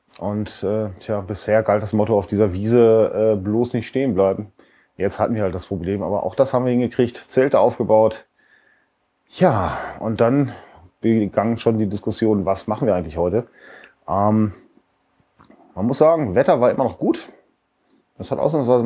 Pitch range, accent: 100-120 Hz, German